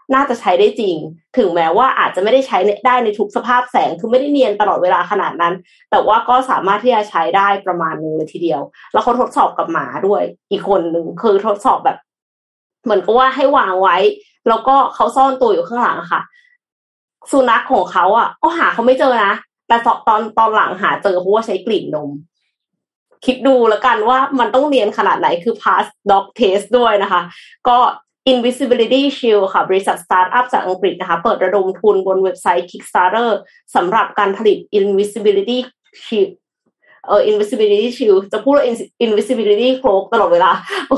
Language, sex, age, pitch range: Thai, female, 20-39, 195-265 Hz